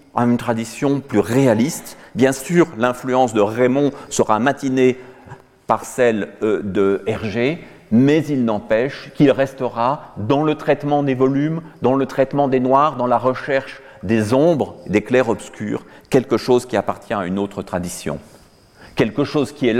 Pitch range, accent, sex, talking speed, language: 110-145 Hz, French, male, 155 wpm, French